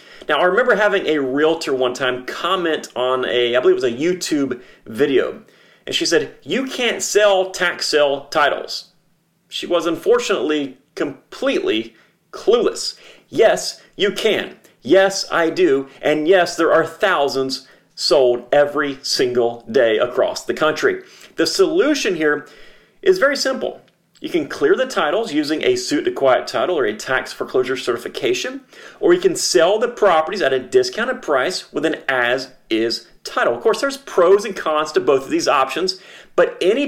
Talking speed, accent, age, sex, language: 165 wpm, American, 40-59, male, English